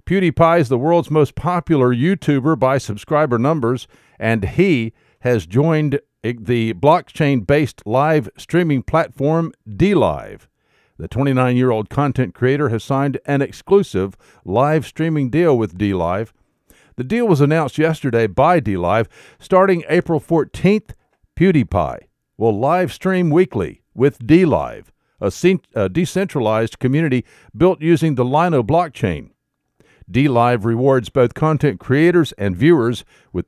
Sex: male